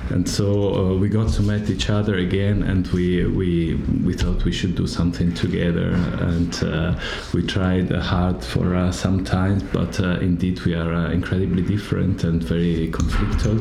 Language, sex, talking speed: Ukrainian, male, 180 wpm